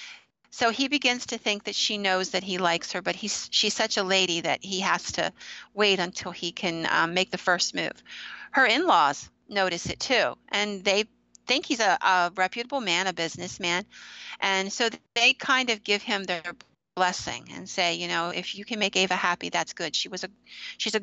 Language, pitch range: English, 180-210 Hz